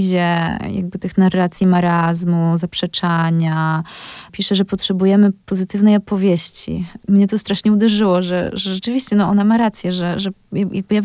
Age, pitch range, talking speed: 20-39, 180-200 Hz, 125 wpm